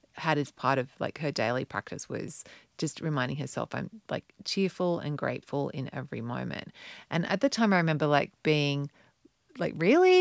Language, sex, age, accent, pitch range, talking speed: English, female, 30-49, Australian, 155-205 Hz, 175 wpm